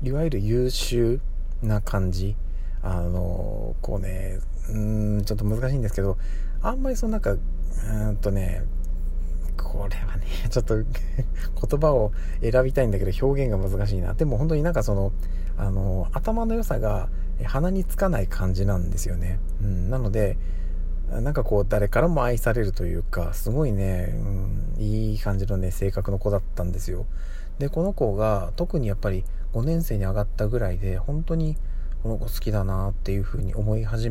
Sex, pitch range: male, 95-120 Hz